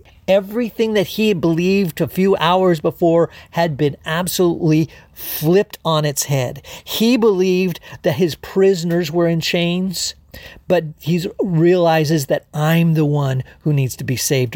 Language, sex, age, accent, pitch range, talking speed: English, male, 40-59, American, 135-180 Hz, 145 wpm